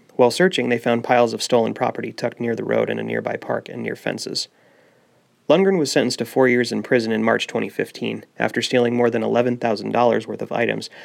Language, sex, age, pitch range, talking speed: English, male, 30-49, 110-130 Hz, 205 wpm